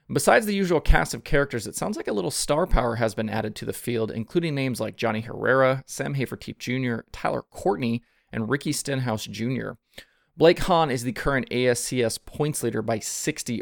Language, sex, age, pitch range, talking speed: English, male, 20-39, 110-135 Hz, 190 wpm